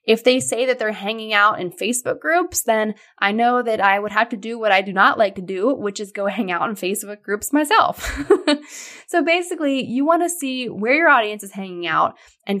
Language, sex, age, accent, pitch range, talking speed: English, female, 10-29, American, 195-260 Hz, 225 wpm